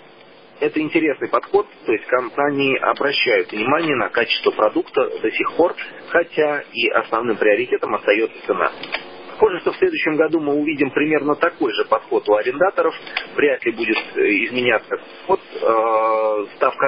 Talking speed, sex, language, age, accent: 140 wpm, male, Russian, 30-49, native